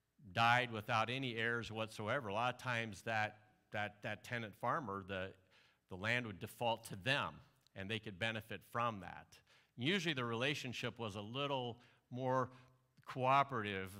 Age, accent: 50-69, American